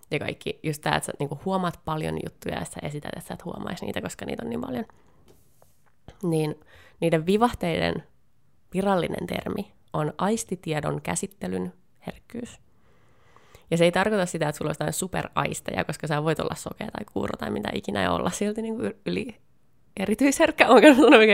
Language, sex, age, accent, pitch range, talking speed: Finnish, female, 20-39, native, 150-205 Hz, 155 wpm